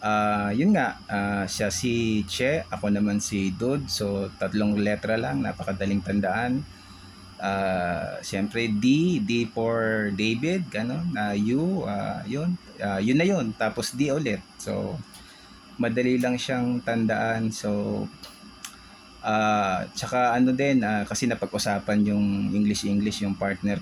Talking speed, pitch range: 130 wpm, 100-115 Hz